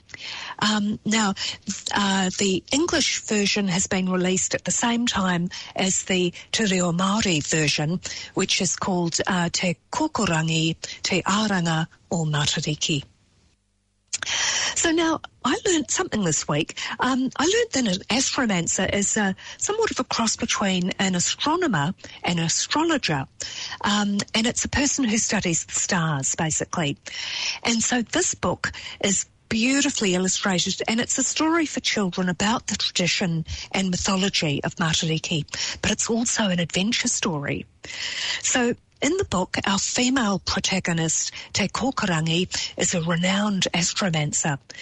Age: 50-69